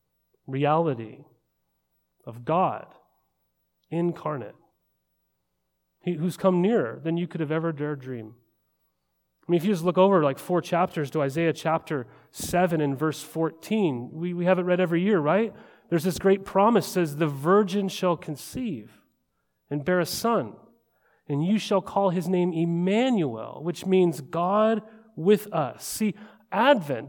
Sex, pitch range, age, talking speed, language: male, 150-205 Hz, 30-49, 145 wpm, English